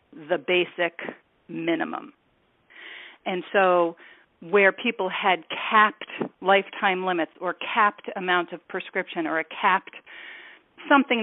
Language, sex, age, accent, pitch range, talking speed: English, female, 40-59, American, 175-235 Hz, 105 wpm